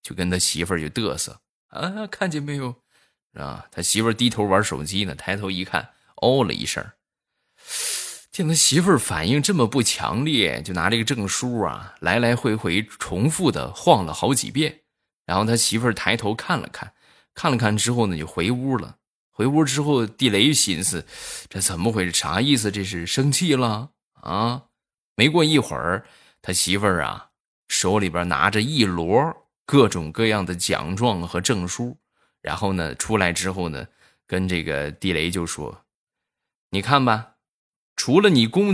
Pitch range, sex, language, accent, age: 90-125 Hz, male, Chinese, native, 20-39